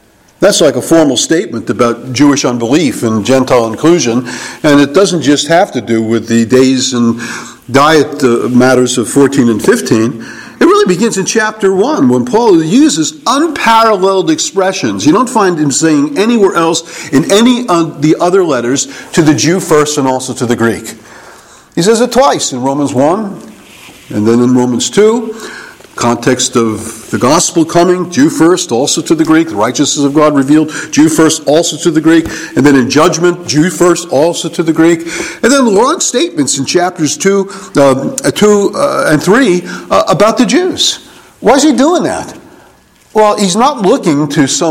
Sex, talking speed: male, 180 wpm